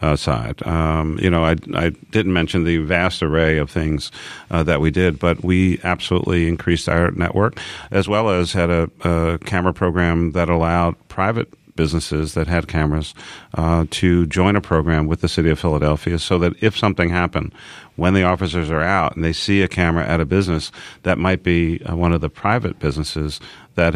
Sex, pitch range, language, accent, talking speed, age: male, 80-90 Hz, English, American, 190 wpm, 40-59